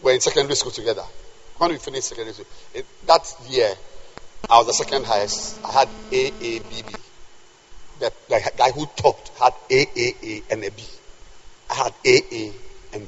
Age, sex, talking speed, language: 50-69, male, 195 wpm, English